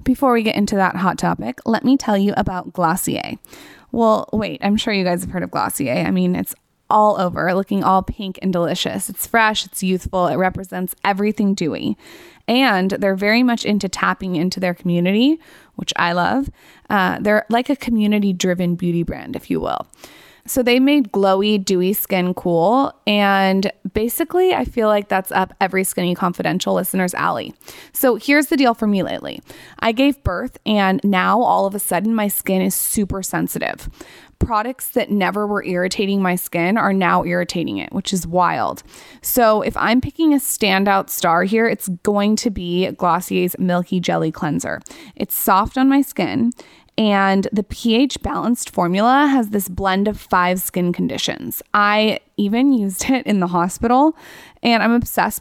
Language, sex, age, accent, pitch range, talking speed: English, female, 20-39, American, 185-235 Hz, 175 wpm